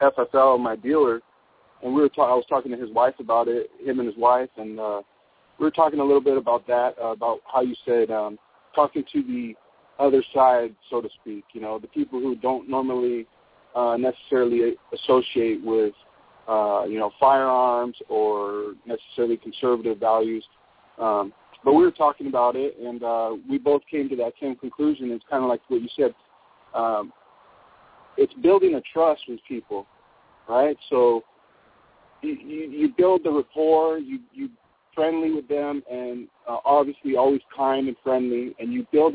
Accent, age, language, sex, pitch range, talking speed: American, 30-49, English, male, 115-145 Hz, 175 wpm